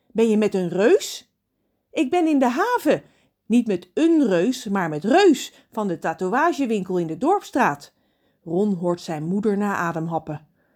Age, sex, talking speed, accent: 40-59, female, 160 wpm, Dutch